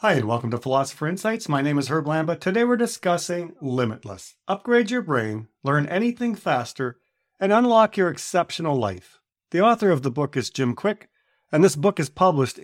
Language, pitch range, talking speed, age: English, 130-205 Hz, 185 wpm, 50-69